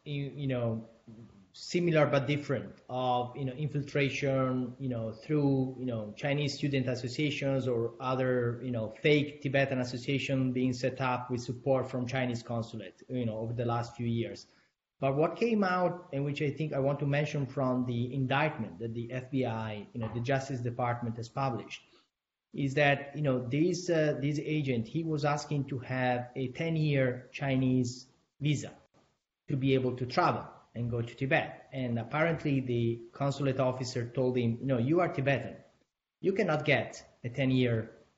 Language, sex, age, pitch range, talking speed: English, male, 30-49, 125-145 Hz, 170 wpm